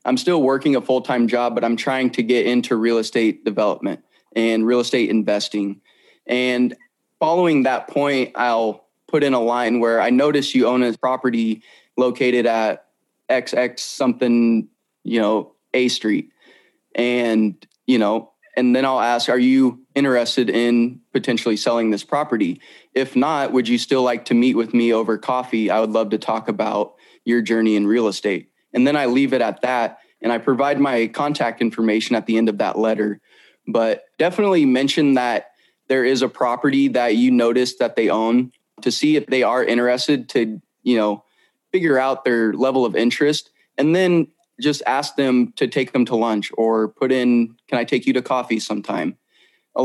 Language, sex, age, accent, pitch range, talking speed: English, male, 20-39, American, 115-130 Hz, 180 wpm